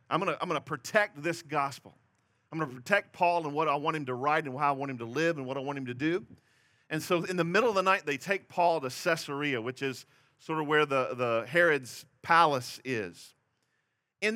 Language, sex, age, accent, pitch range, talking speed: English, male, 40-59, American, 135-165 Hz, 240 wpm